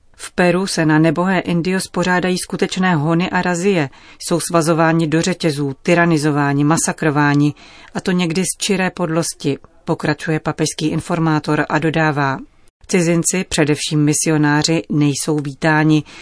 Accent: native